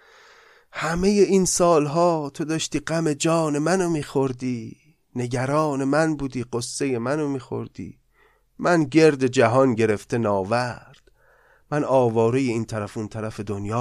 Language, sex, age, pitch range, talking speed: Persian, male, 30-49, 120-165 Hz, 115 wpm